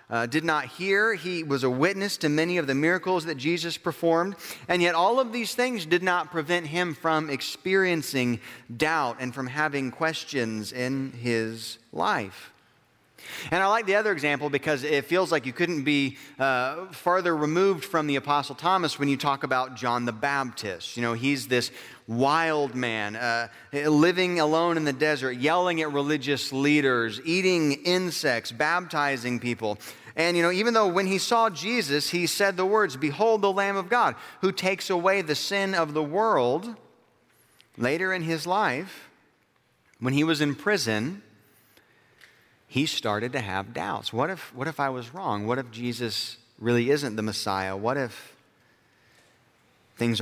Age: 30-49